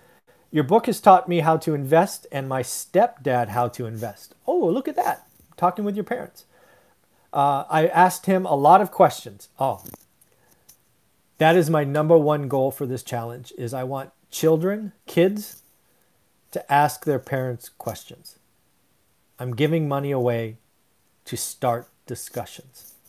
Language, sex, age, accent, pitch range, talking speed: English, male, 40-59, American, 135-175 Hz, 150 wpm